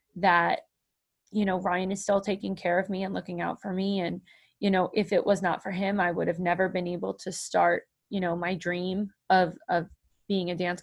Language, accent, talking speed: English, American, 225 wpm